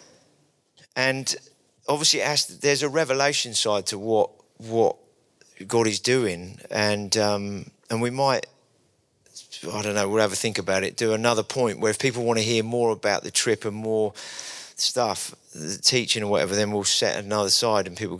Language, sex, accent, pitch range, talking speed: English, male, British, 100-125 Hz, 180 wpm